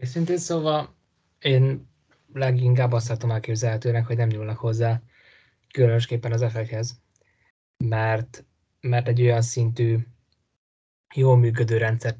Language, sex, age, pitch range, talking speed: Hungarian, male, 20-39, 110-120 Hz, 110 wpm